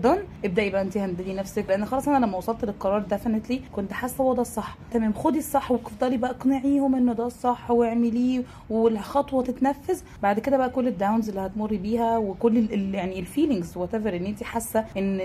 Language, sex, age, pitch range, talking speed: Arabic, female, 20-39, 205-240 Hz, 180 wpm